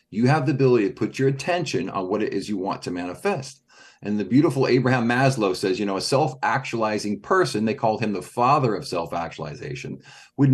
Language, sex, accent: English, male, American